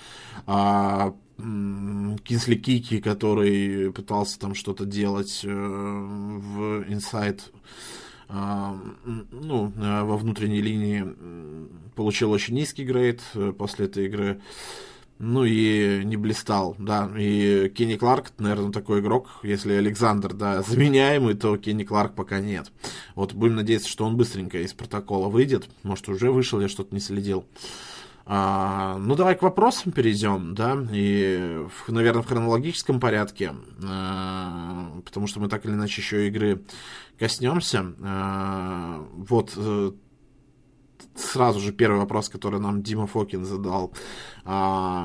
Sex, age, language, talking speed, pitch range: male, 20-39, Russian, 115 wpm, 100-115 Hz